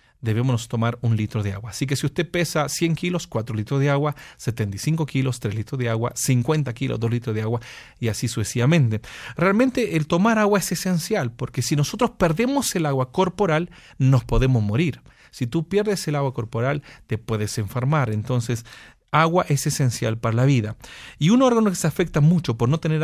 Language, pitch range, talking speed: English, 120-165 Hz, 195 wpm